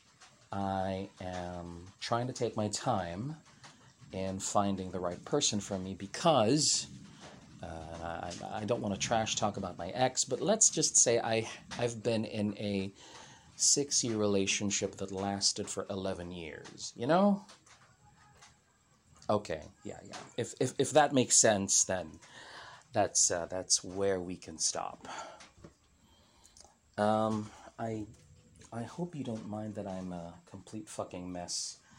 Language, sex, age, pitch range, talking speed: English, male, 40-59, 95-115 Hz, 140 wpm